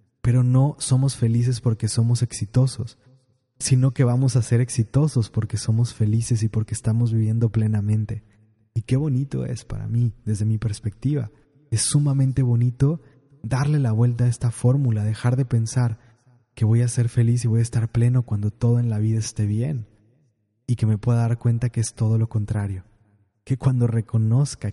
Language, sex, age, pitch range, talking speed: Spanish, male, 20-39, 110-130 Hz, 175 wpm